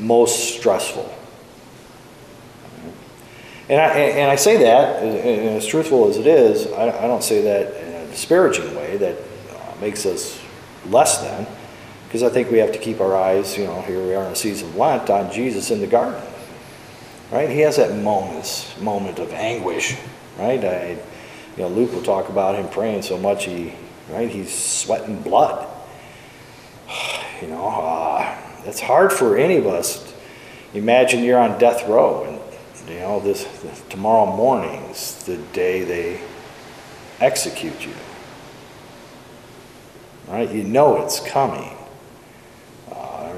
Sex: male